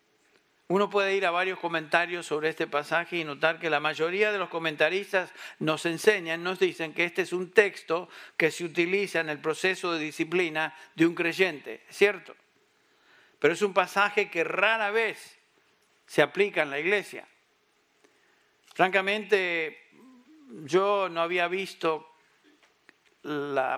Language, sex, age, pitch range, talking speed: Spanish, male, 50-69, 155-200 Hz, 140 wpm